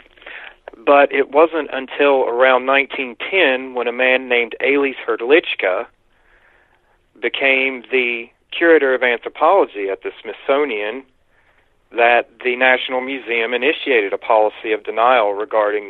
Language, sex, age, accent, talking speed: English, male, 40-59, American, 115 wpm